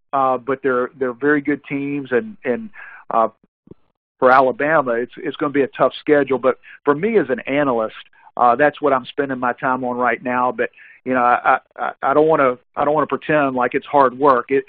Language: English